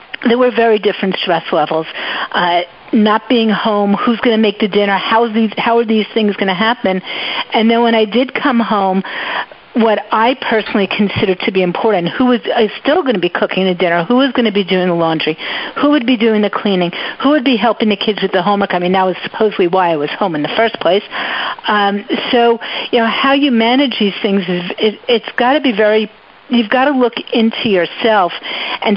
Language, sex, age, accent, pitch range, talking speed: English, female, 50-69, American, 195-240 Hz, 225 wpm